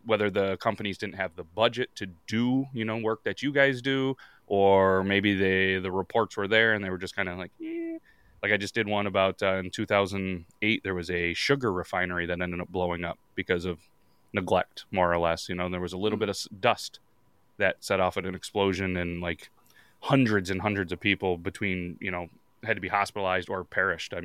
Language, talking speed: English, 220 wpm